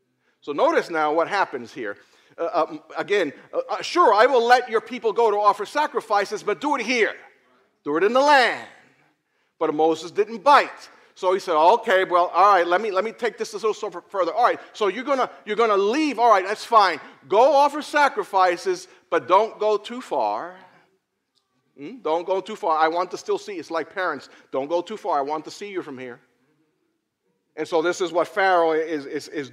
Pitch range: 155-250 Hz